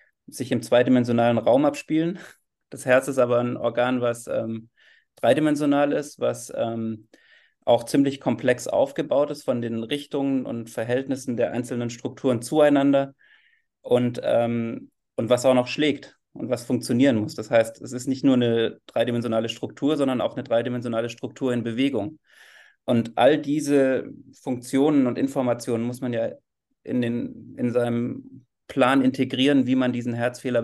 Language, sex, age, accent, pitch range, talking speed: German, male, 30-49, German, 120-140 Hz, 150 wpm